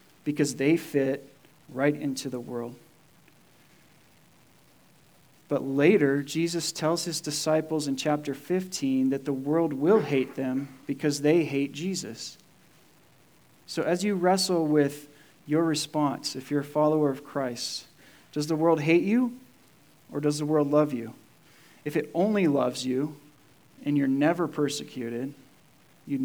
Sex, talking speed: male, 135 wpm